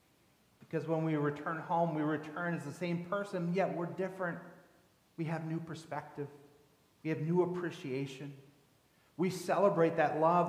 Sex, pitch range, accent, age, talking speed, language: male, 130-165 Hz, American, 40-59, 145 wpm, English